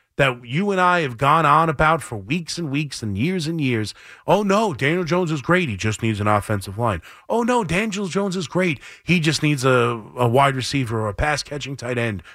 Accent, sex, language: American, male, English